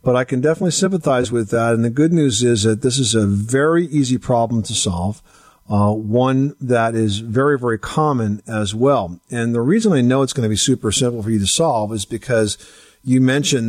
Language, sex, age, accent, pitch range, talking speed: English, male, 50-69, American, 105-130 Hz, 215 wpm